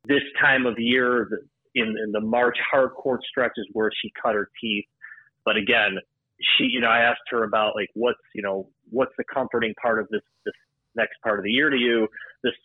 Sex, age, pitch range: male, 30-49, 110-135 Hz